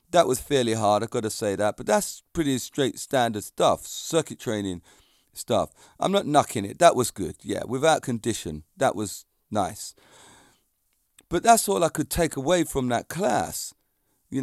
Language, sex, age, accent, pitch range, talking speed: English, male, 40-59, British, 120-180 Hz, 175 wpm